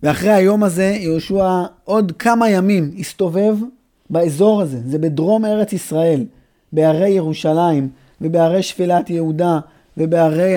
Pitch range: 160-205 Hz